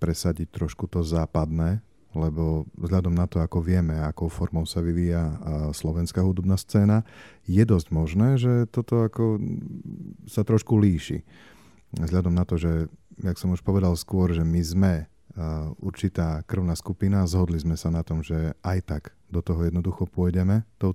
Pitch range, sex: 80-95 Hz, male